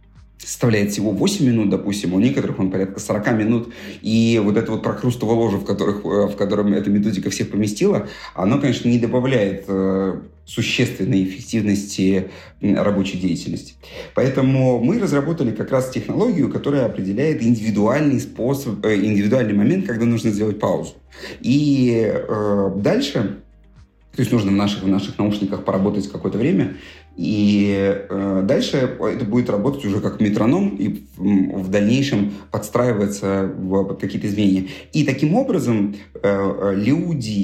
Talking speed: 130 wpm